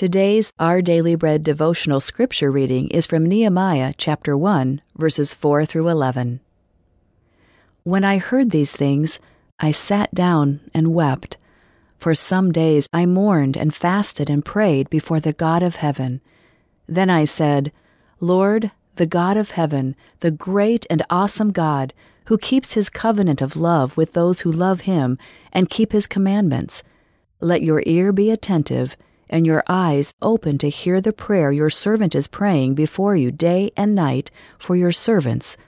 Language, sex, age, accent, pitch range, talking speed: English, female, 40-59, American, 145-190 Hz, 155 wpm